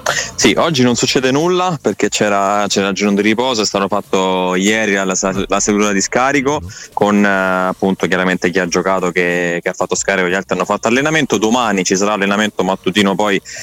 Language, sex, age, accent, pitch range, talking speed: Italian, male, 20-39, native, 95-110 Hz, 185 wpm